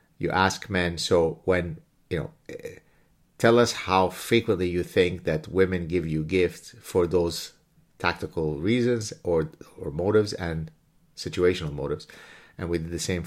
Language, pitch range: English, 80-95 Hz